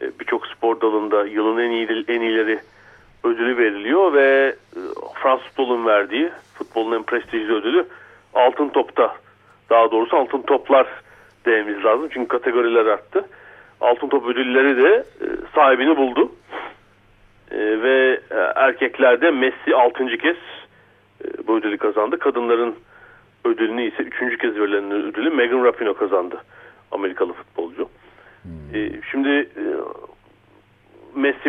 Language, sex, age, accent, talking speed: Turkish, male, 40-59, native, 110 wpm